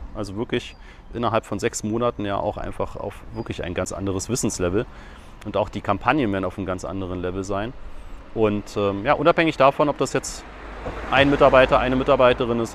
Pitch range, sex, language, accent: 100-125 Hz, male, German, German